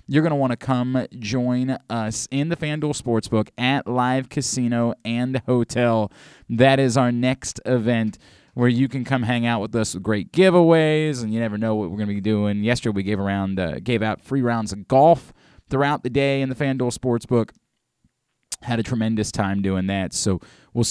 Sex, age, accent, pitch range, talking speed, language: male, 30-49, American, 105-135 Hz, 190 wpm, English